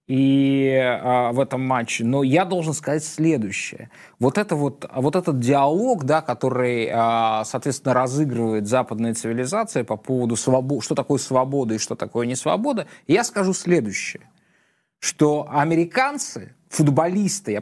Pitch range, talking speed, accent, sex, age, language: 130-180 Hz, 115 wpm, native, male, 20-39, Russian